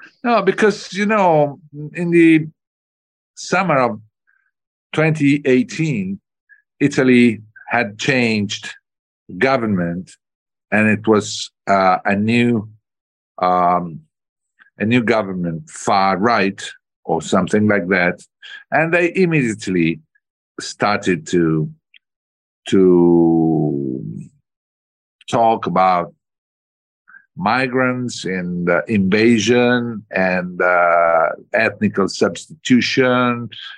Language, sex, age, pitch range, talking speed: Dutch, male, 50-69, 90-130 Hz, 80 wpm